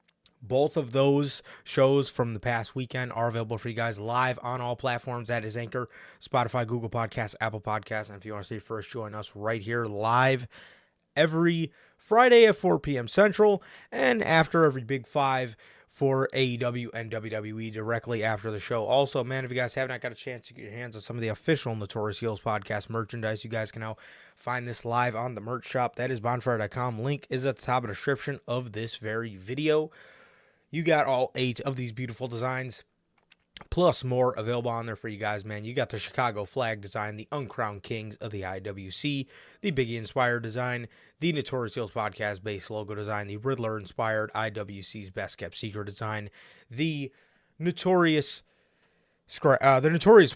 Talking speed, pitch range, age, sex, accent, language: 185 wpm, 110-135 Hz, 20-39, male, American, English